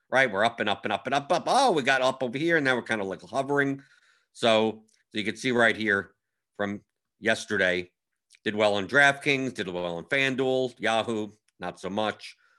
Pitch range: 105-135 Hz